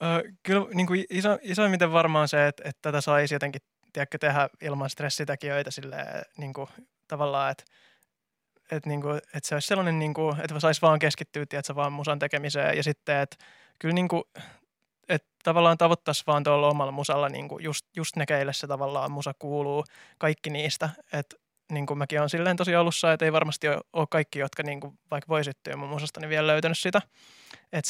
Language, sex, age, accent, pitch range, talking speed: Finnish, male, 20-39, native, 145-160 Hz, 175 wpm